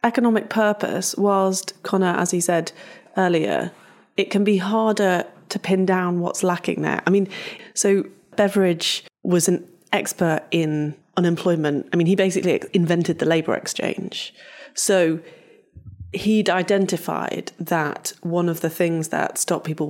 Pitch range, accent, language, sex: 155-185 Hz, British, English, female